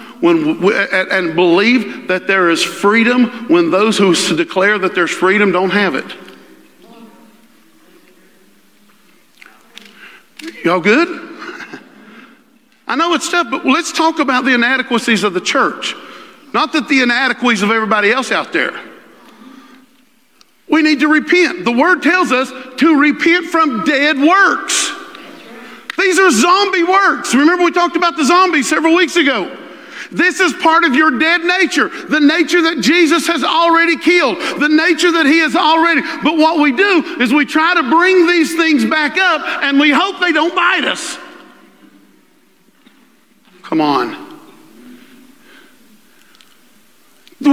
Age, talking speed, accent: 50-69, 140 wpm, American